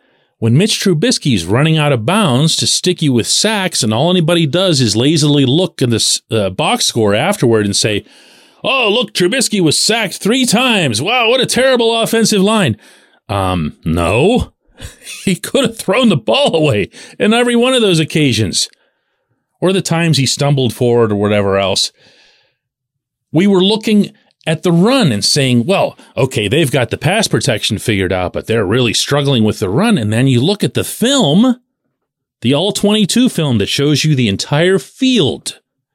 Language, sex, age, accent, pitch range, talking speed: English, male, 40-59, American, 130-215 Hz, 175 wpm